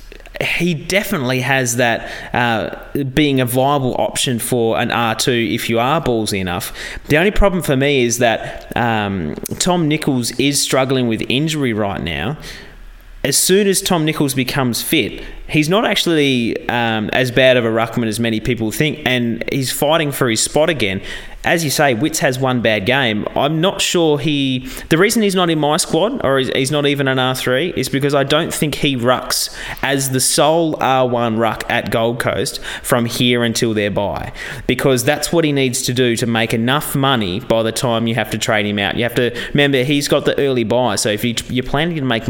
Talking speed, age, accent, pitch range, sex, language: 200 wpm, 30-49, Australian, 115-145 Hz, male, English